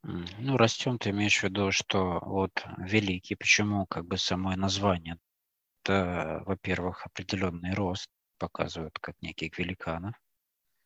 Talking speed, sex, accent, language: 120 wpm, male, native, Russian